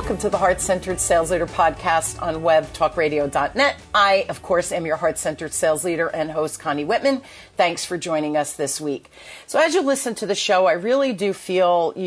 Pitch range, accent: 160-205 Hz, American